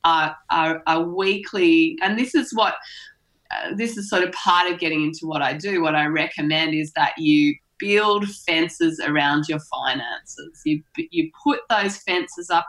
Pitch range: 165-230 Hz